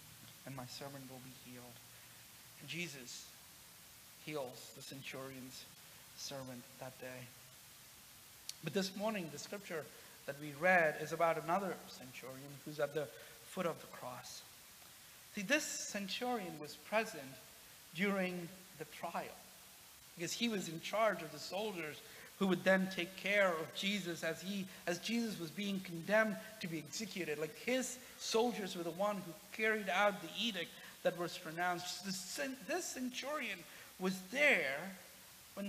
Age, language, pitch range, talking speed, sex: 50-69, English, 160-215 Hz, 145 wpm, male